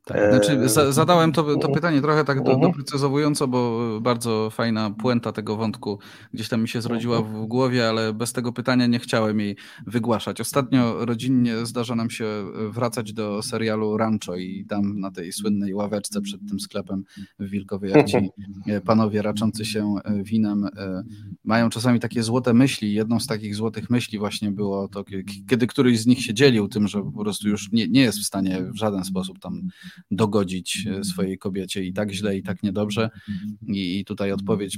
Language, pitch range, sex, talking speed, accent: Polish, 105-125 Hz, male, 170 wpm, native